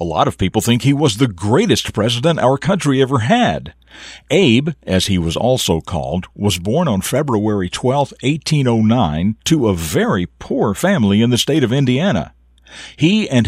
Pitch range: 95-125 Hz